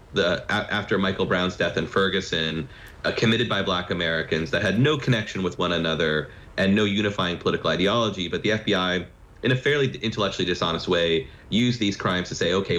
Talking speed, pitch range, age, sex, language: 190 wpm, 90-110 Hz, 30-49, male, English